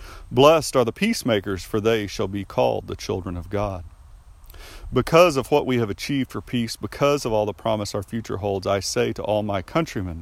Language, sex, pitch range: English, male, 85-110 Hz